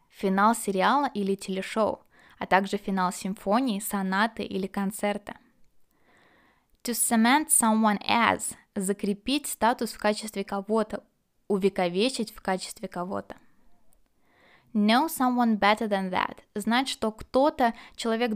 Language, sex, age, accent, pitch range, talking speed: Russian, female, 20-39, native, 195-240 Hz, 110 wpm